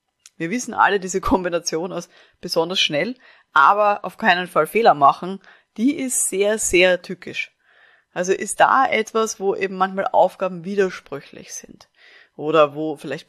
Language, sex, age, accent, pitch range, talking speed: German, female, 30-49, German, 170-205 Hz, 145 wpm